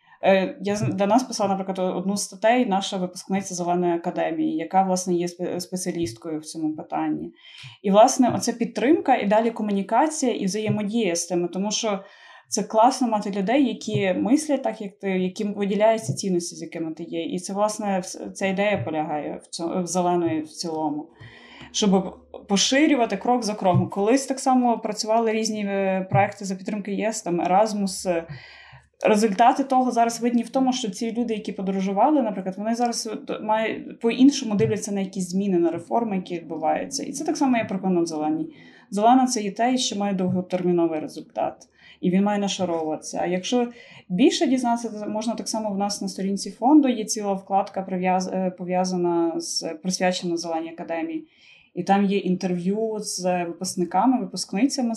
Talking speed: 160 wpm